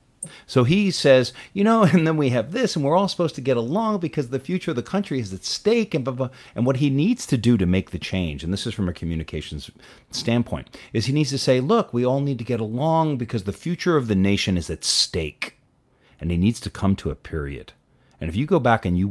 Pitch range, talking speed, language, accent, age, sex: 90-135 Hz, 260 wpm, English, American, 40-59, male